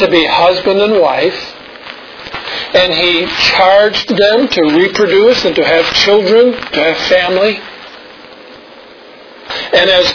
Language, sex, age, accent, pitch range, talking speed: English, male, 50-69, American, 175-240 Hz, 120 wpm